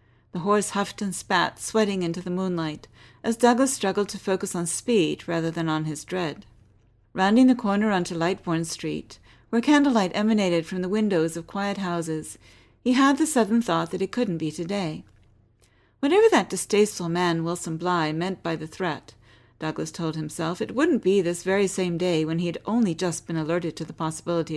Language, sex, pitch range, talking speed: English, female, 155-210 Hz, 185 wpm